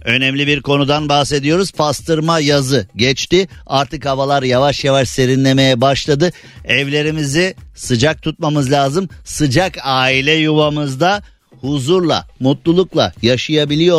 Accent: native